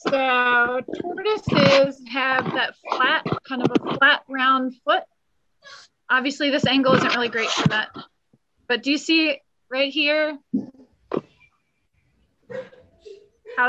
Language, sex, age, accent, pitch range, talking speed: English, female, 30-49, American, 245-315 Hz, 115 wpm